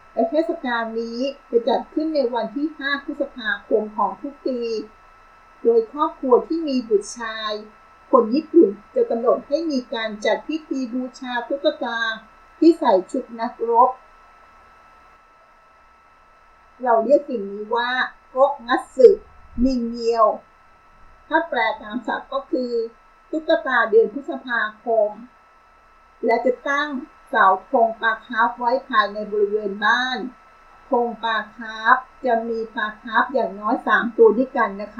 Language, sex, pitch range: Thai, female, 220-280 Hz